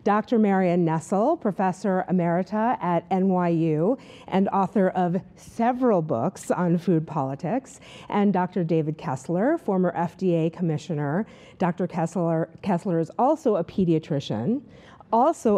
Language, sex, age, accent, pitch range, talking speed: English, female, 40-59, American, 165-210 Hz, 115 wpm